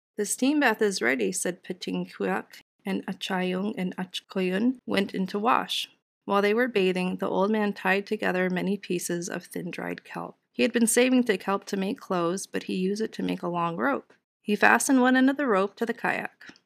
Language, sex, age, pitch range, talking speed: English, female, 30-49, 185-225 Hz, 210 wpm